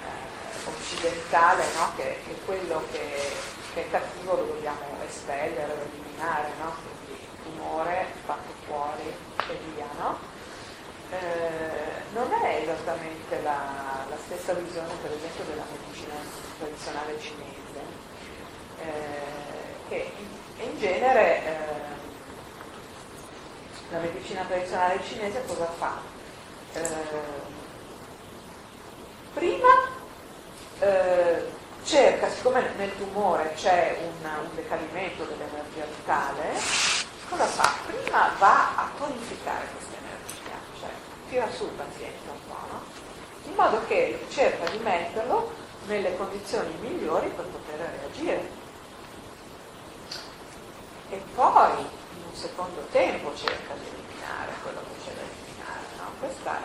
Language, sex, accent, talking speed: Italian, female, native, 110 wpm